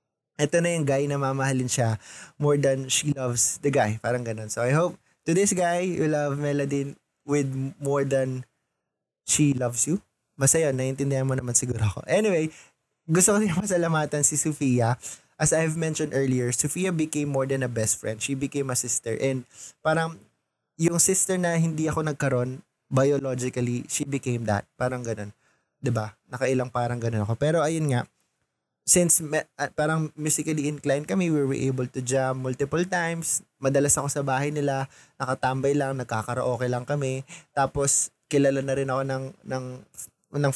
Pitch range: 130-150 Hz